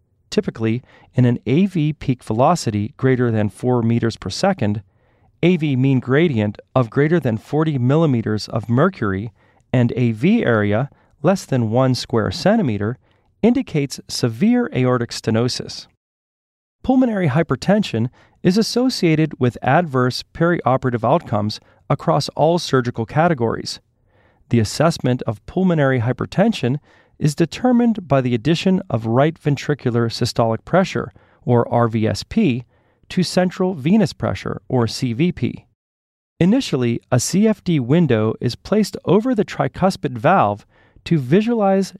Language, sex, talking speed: English, male, 115 wpm